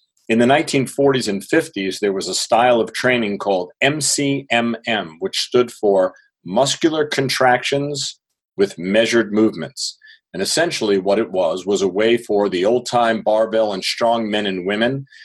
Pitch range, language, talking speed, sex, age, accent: 100-125 Hz, English, 150 wpm, male, 40-59, American